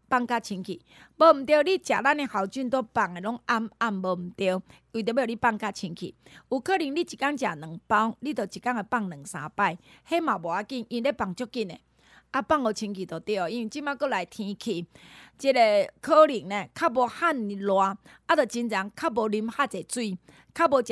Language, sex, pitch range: Chinese, female, 195-270 Hz